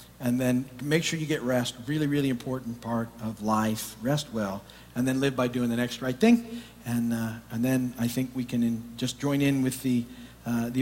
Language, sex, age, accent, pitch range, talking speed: English, male, 50-69, American, 110-150 Hz, 220 wpm